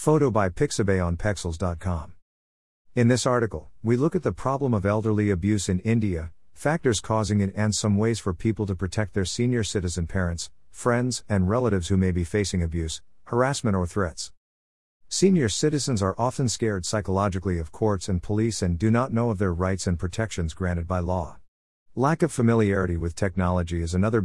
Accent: American